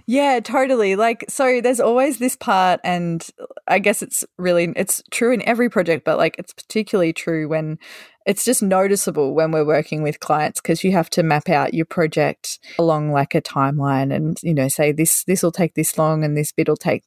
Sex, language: female, English